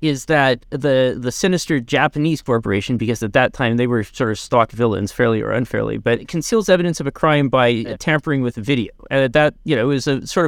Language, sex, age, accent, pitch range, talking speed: English, male, 30-49, American, 115-145 Hz, 225 wpm